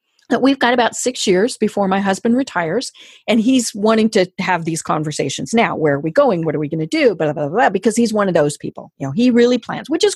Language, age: English, 50-69